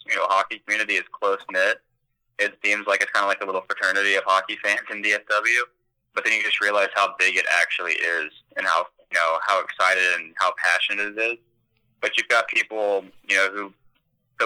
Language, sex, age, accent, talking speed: English, male, 10-29, American, 210 wpm